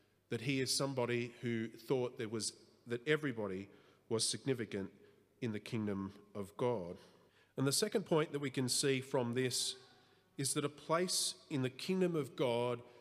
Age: 40-59